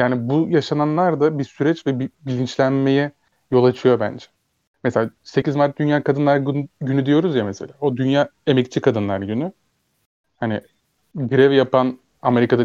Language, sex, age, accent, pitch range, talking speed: Turkish, male, 30-49, native, 120-140 Hz, 140 wpm